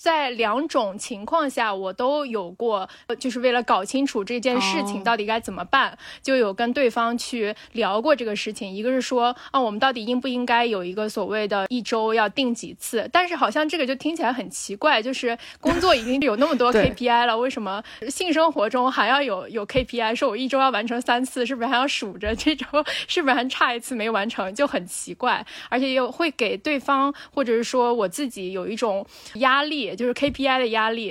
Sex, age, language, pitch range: female, 20-39, Chinese, 220-275 Hz